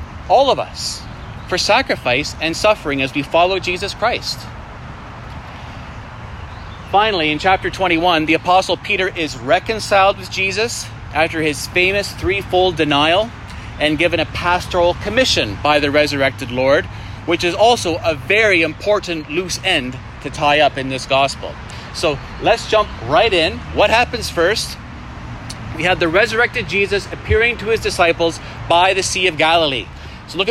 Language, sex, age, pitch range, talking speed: English, male, 30-49, 135-190 Hz, 150 wpm